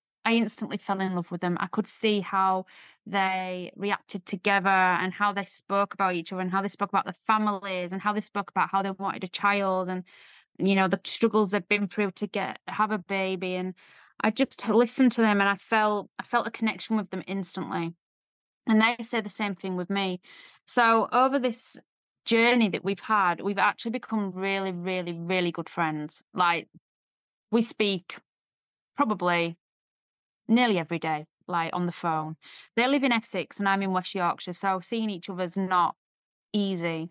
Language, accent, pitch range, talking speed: English, British, 185-215 Hz, 190 wpm